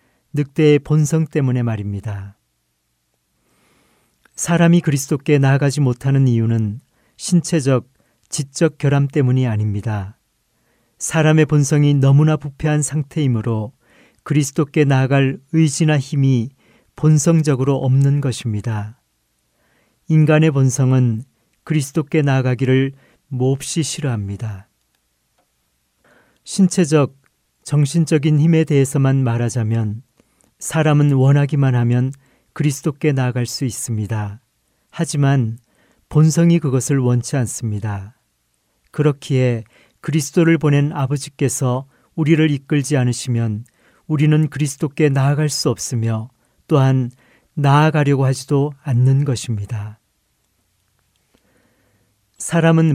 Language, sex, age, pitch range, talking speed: English, male, 40-59, 115-150 Hz, 75 wpm